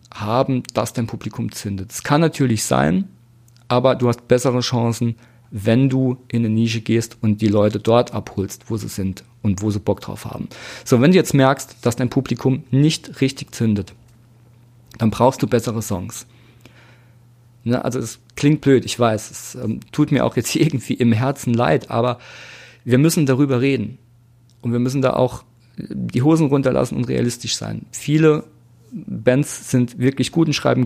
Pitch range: 115-135 Hz